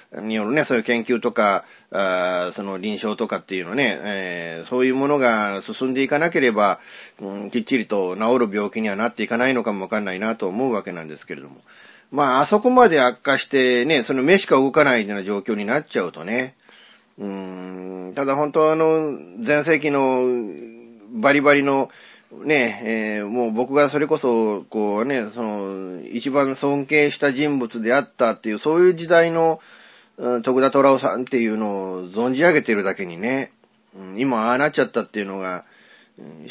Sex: male